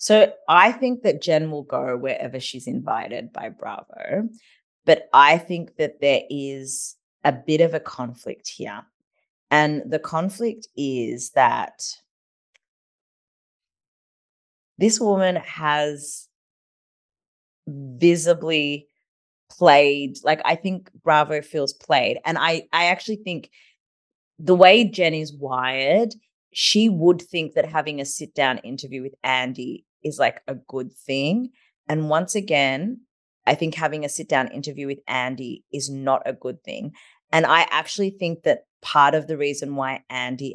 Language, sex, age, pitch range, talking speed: English, female, 30-49, 140-175 Hz, 140 wpm